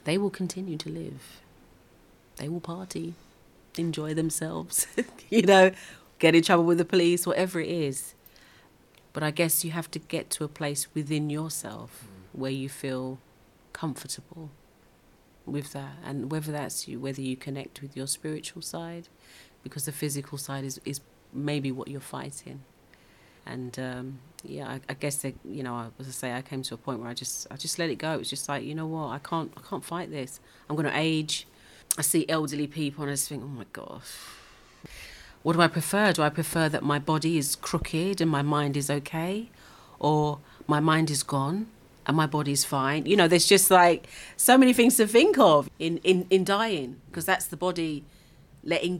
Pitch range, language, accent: 140-170 Hz, English, British